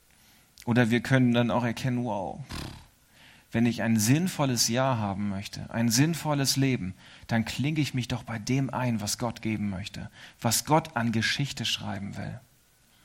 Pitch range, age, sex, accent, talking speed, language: 120-155 Hz, 40-59, male, German, 160 wpm, German